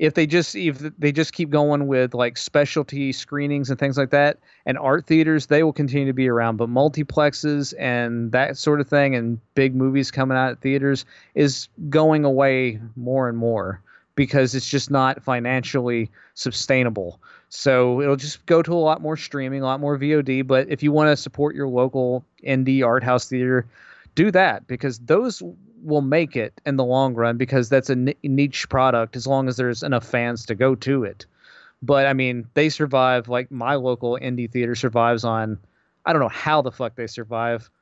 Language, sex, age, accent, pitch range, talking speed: English, male, 30-49, American, 125-140 Hz, 195 wpm